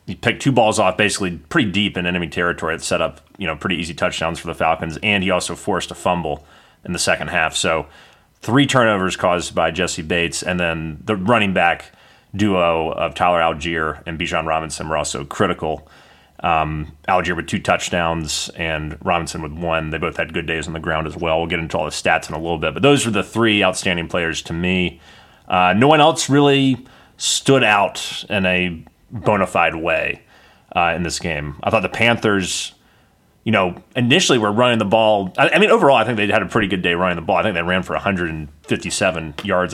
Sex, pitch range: male, 80-110 Hz